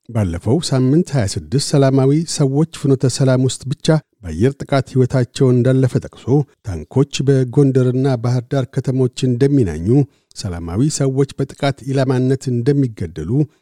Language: Amharic